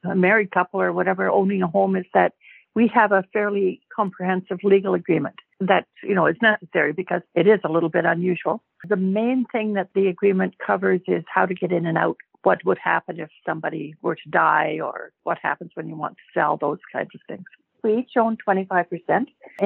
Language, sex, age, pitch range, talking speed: English, female, 60-79, 170-210 Hz, 205 wpm